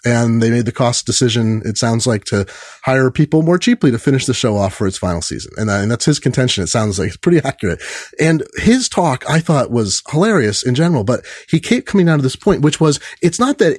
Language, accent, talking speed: English, American, 245 wpm